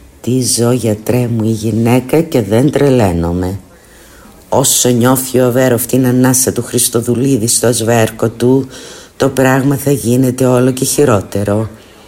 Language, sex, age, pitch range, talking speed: Greek, female, 50-69, 100-125 Hz, 135 wpm